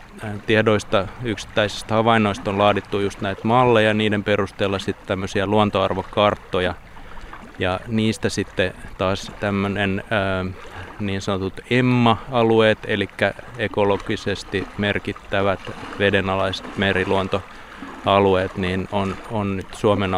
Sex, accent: male, native